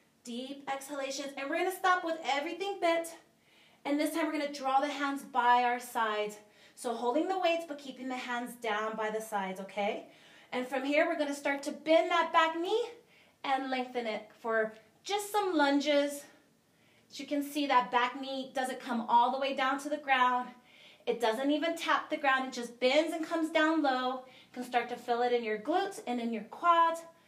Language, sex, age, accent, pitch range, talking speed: English, female, 30-49, American, 235-305 Hz, 210 wpm